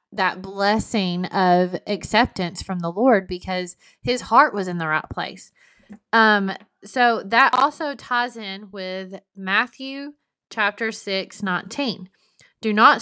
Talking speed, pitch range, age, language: 125 wpm, 180-220 Hz, 20-39, English